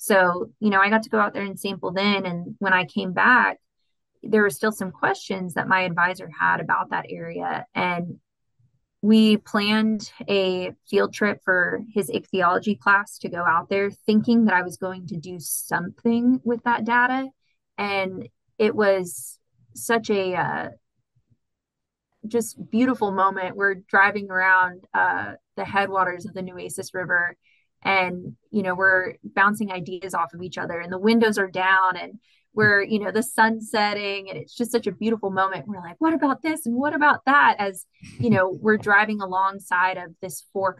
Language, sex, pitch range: English, female, 180-215 Hz